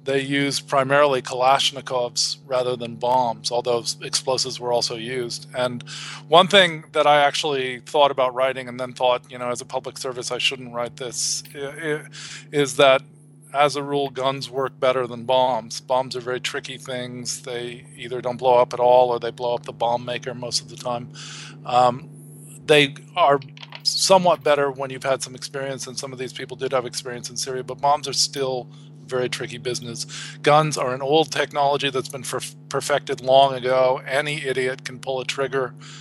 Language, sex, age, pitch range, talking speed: English, male, 40-59, 125-145 Hz, 185 wpm